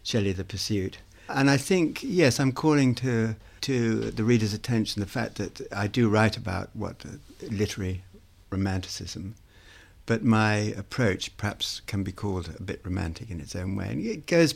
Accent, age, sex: British, 60-79, male